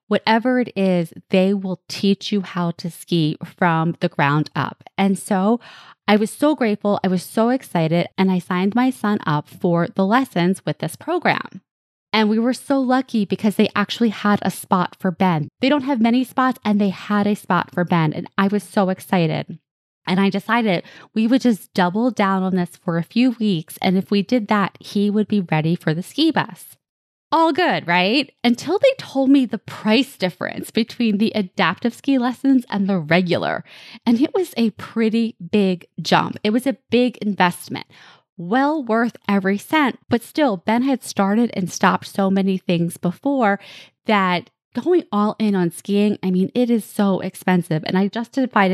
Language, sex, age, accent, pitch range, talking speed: English, female, 20-39, American, 180-230 Hz, 190 wpm